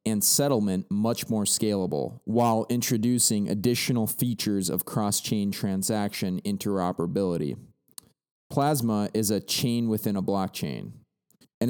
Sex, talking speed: male, 110 wpm